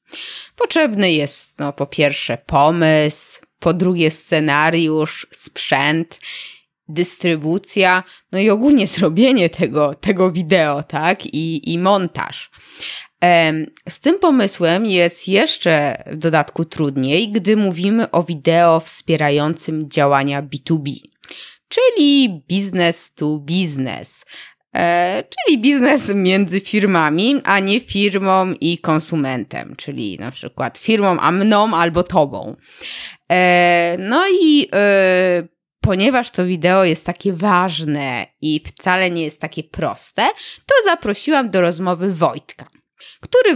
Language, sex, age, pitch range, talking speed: Polish, female, 20-39, 160-205 Hz, 105 wpm